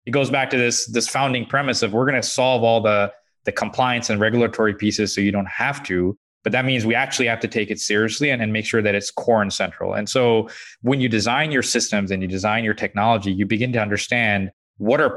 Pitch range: 105-125 Hz